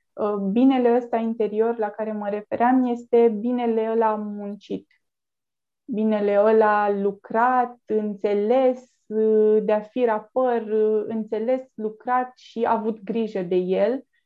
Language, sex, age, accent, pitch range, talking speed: Romanian, female, 20-39, native, 200-240 Hz, 120 wpm